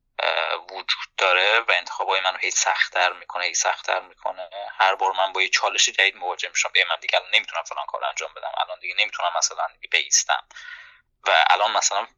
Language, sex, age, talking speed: Persian, male, 20-39, 180 wpm